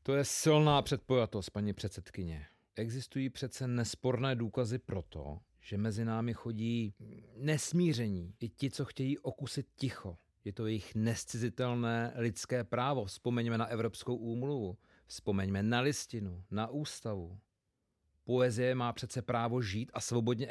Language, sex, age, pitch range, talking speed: Czech, male, 40-59, 95-120 Hz, 130 wpm